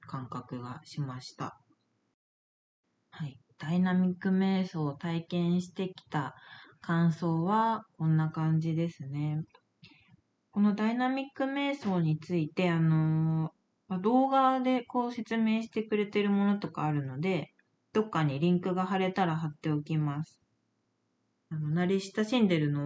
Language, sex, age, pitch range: Japanese, female, 20-39, 155-205 Hz